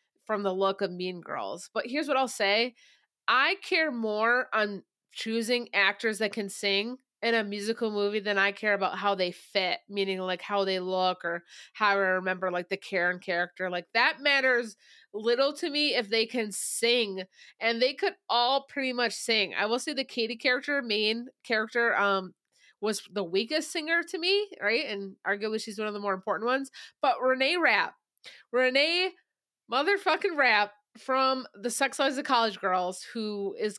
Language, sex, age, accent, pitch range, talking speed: English, female, 20-39, American, 195-250 Hz, 180 wpm